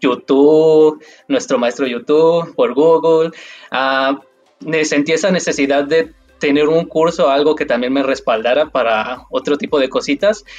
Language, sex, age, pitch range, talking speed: Spanish, male, 20-39, 130-165 Hz, 135 wpm